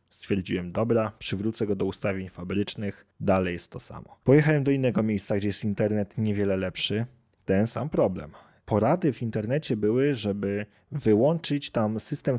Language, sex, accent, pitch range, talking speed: Polish, male, native, 100-120 Hz, 150 wpm